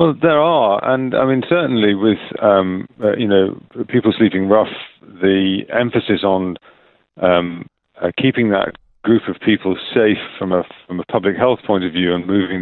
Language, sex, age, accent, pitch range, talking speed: English, male, 40-59, British, 90-110 Hz, 175 wpm